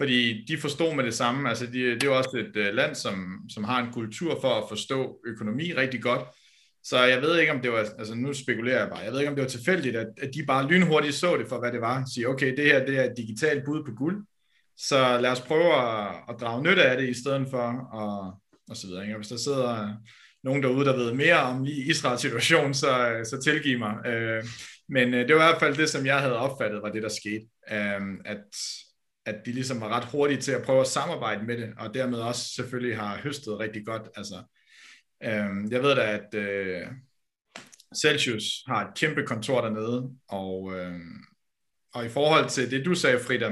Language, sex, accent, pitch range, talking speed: Danish, male, native, 110-135 Hz, 220 wpm